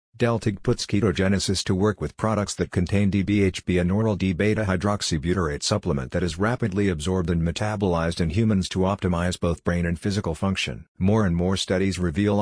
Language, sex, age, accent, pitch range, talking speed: English, male, 50-69, American, 90-105 Hz, 165 wpm